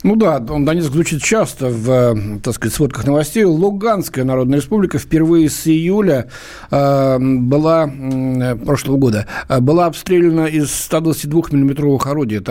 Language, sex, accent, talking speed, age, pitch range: Russian, male, native, 135 wpm, 60-79, 130-170 Hz